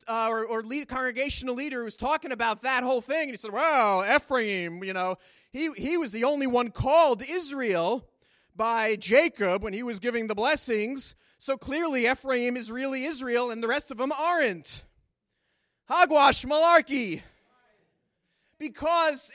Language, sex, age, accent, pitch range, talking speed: English, male, 30-49, American, 245-320 Hz, 150 wpm